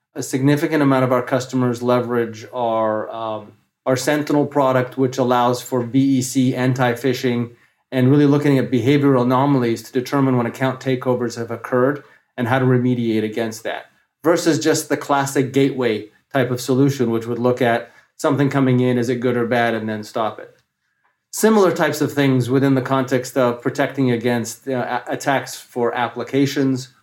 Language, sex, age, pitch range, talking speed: English, male, 30-49, 120-140 Hz, 160 wpm